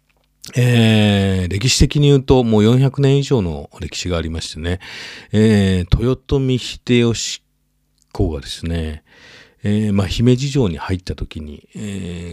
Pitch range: 90-115 Hz